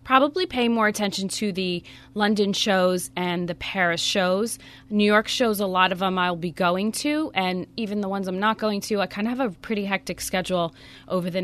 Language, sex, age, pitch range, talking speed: English, female, 20-39, 175-220 Hz, 215 wpm